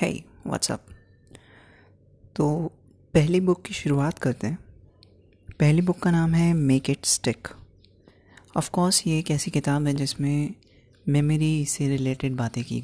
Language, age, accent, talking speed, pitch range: Hindi, 30-49, native, 145 wpm, 100-155 Hz